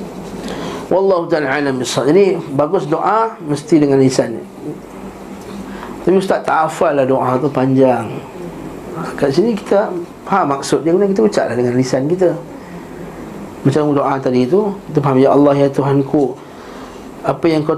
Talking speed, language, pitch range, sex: 140 wpm, Malay, 145-195 Hz, male